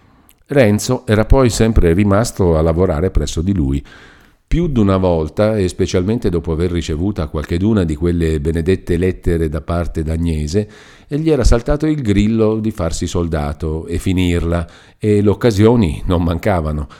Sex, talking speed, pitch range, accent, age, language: male, 150 wpm, 85-115 Hz, native, 50-69, Italian